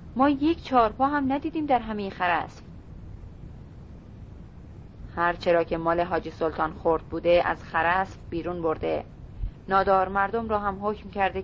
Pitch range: 160-205 Hz